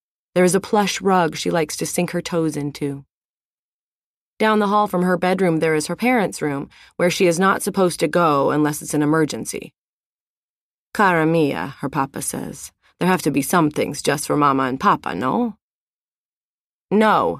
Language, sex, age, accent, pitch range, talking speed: English, female, 30-49, American, 150-190 Hz, 180 wpm